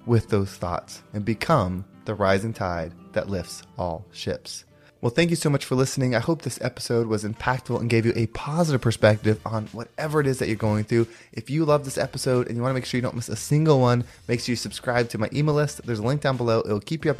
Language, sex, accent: English, male, American